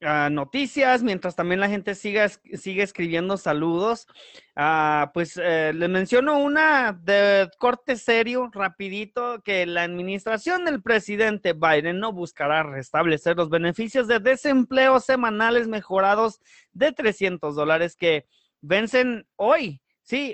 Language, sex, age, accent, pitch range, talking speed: English, male, 30-49, Mexican, 170-235 Hz, 125 wpm